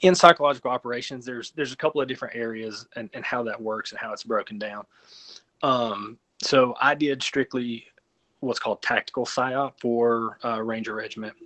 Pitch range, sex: 110-130 Hz, male